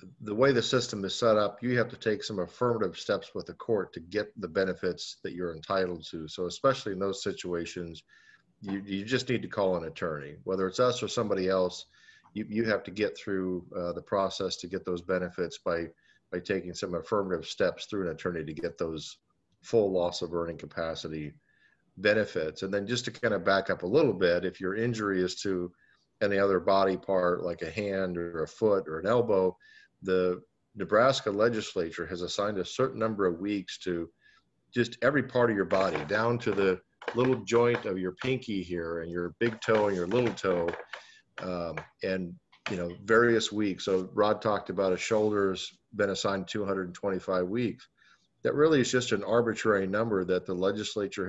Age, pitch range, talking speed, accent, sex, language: 50-69, 90-110 Hz, 190 wpm, American, male, English